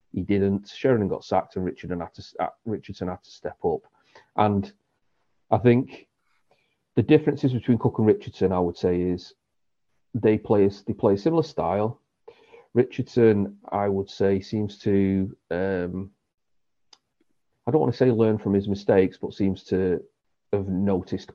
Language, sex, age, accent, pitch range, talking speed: English, male, 40-59, British, 95-105 Hz, 160 wpm